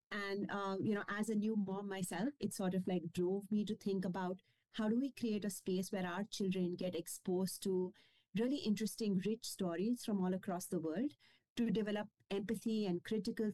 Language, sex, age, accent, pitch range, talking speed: English, female, 30-49, Indian, 185-220 Hz, 195 wpm